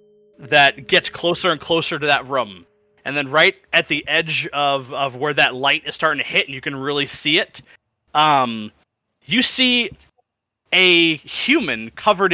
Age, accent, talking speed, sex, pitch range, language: 30-49, American, 170 wpm, male, 135-190 Hz, English